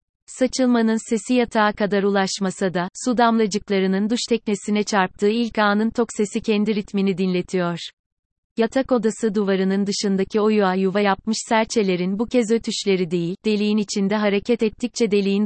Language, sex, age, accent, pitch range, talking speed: Turkish, female, 30-49, native, 190-225 Hz, 140 wpm